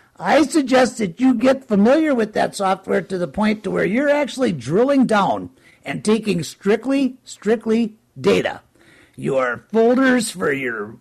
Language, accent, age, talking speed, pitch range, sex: English, American, 50-69, 145 wpm, 220-270 Hz, male